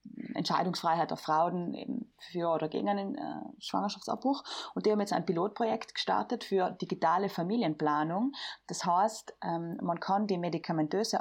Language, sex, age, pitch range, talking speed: German, female, 20-39, 165-220 Hz, 145 wpm